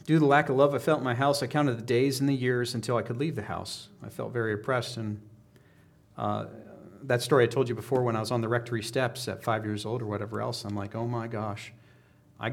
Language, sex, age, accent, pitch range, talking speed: English, male, 40-59, American, 115-140 Hz, 270 wpm